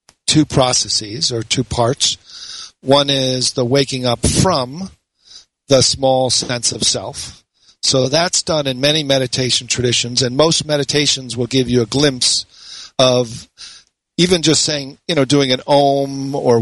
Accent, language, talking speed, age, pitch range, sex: American, English, 150 wpm, 50-69, 125-145 Hz, male